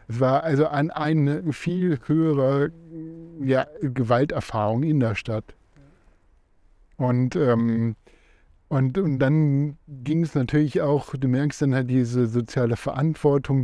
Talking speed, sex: 120 wpm, male